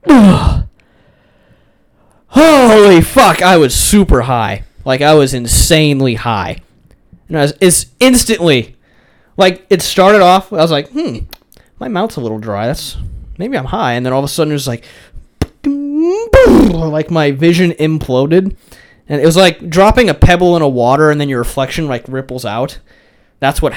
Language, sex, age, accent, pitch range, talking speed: English, male, 20-39, American, 125-175 Hz, 165 wpm